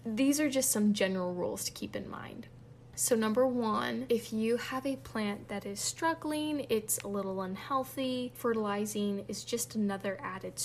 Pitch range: 195-230 Hz